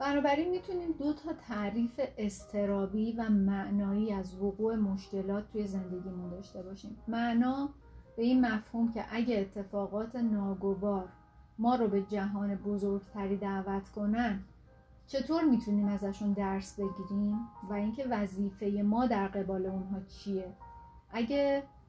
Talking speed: 120 wpm